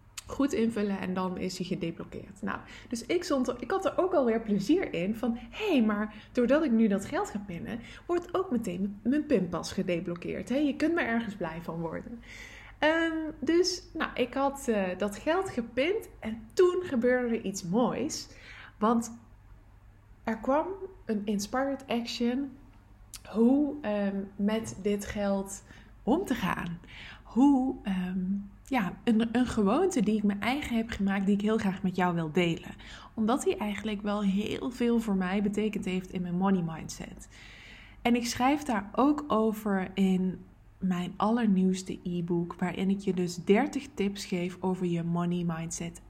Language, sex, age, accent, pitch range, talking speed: English, female, 20-39, Dutch, 185-240 Hz, 170 wpm